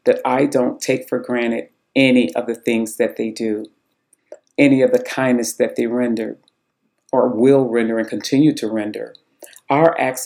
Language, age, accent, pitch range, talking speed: English, 40-59, American, 110-130 Hz, 170 wpm